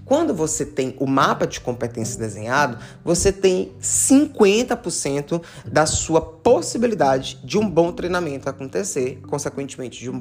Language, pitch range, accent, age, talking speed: Portuguese, 125-185 Hz, Brazilian, 20-39, 130 wpm